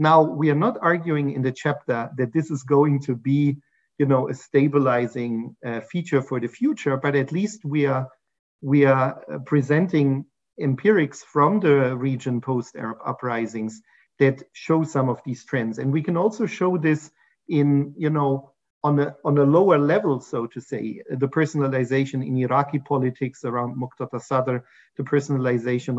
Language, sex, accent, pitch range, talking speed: English, male, German, 130-155 Hz, 150 wpm